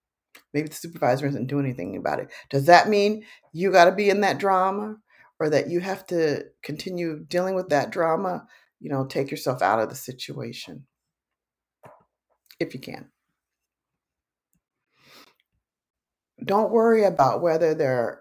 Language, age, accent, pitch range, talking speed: English, 50-69, American, 150-205 Hz, 145 wpm